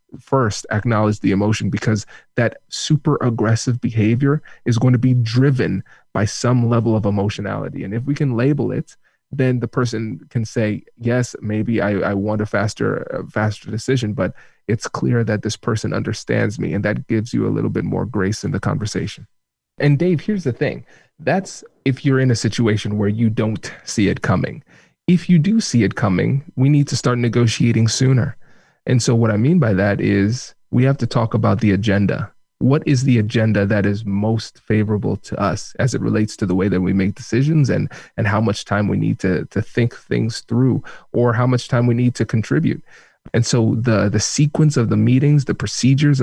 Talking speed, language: 200 wpm, English